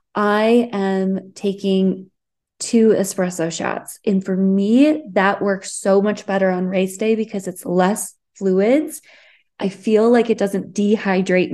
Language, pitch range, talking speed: English, 190-230 Hz, 140 wpm